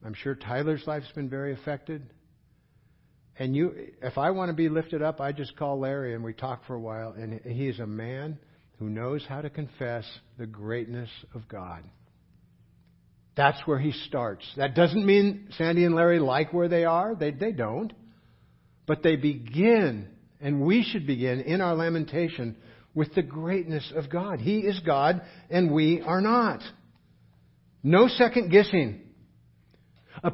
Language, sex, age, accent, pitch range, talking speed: English, male, 60-79, American, 120-185 Hz, 160 wpm